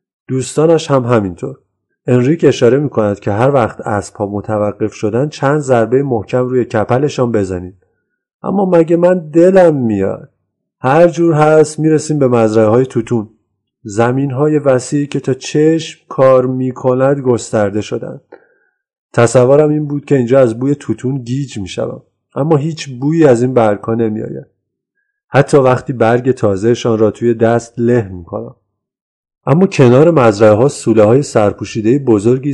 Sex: male